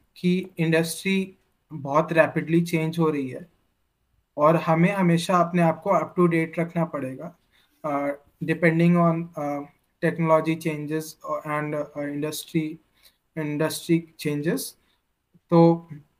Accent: native